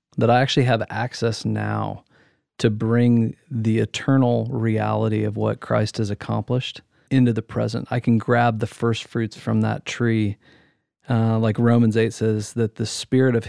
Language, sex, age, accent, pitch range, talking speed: English, male, 40-59, American, 115-130 Hz, 165 wpm